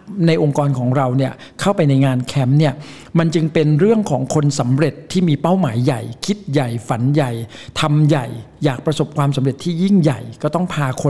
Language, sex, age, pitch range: Thai, male, 60-79, 135-165 Hz